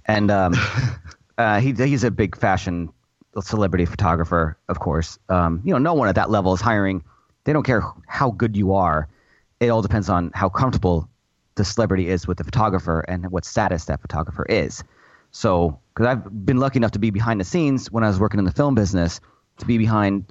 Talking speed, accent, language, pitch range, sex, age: 205 wpm, American, English, 95-115 Hz, male, 30-49